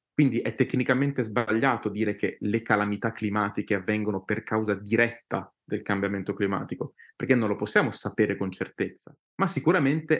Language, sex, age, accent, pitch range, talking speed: Italian, male, 30-49, native, 105-135 Hz, 145 wpm